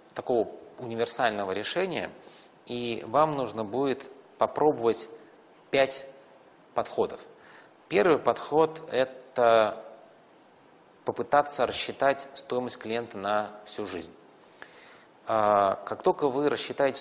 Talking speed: 90 wpm